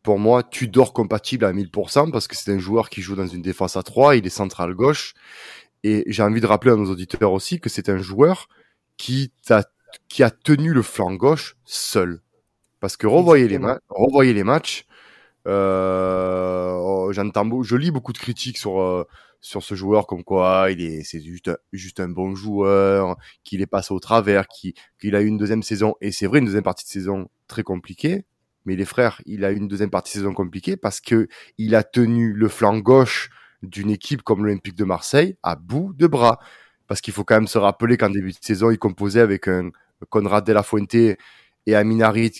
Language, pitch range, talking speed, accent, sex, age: French, 95-115 Hz, 205 wpm, French, male, 20-39